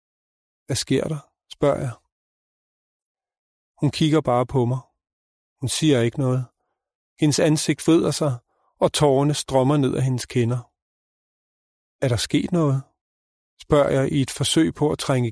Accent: native